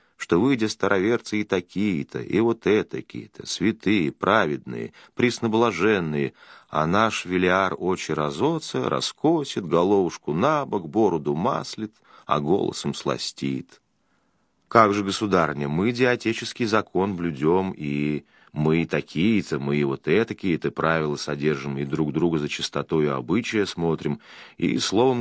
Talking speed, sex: 125 wpm, male